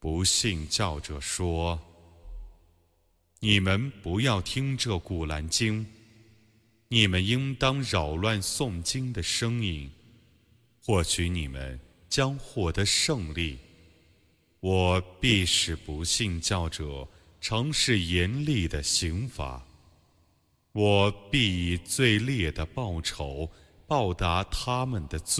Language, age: Arabic, 30-49